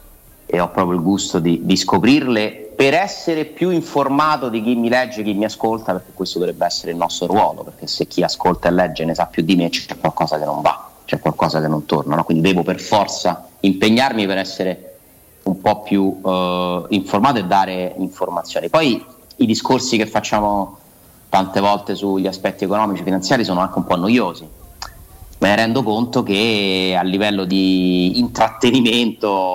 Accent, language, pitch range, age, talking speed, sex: native, Italian, 95-115 Hz, 30-49, 180 wpm, male